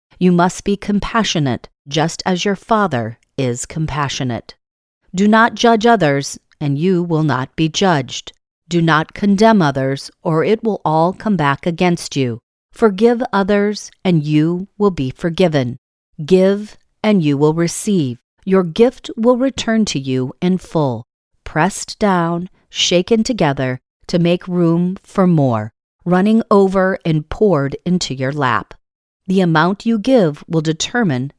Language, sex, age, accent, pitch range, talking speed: English, female, 40-59, American, 145-210 Hz, 140 wpm